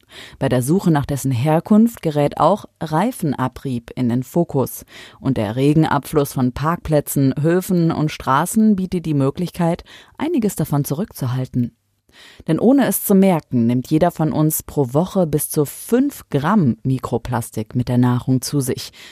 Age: 30-49